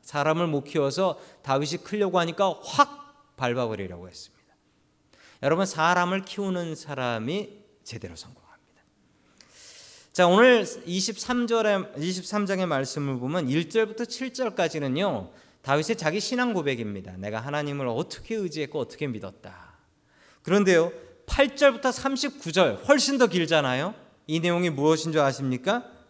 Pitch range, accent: 145-220 Hz, native